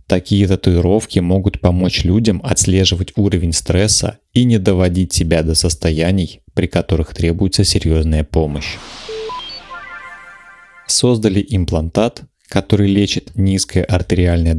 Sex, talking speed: male, 105 wpm